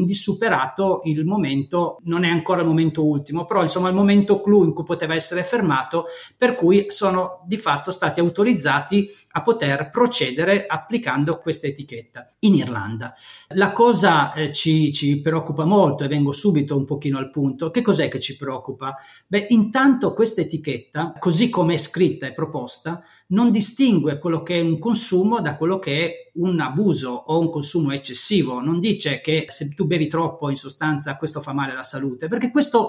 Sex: male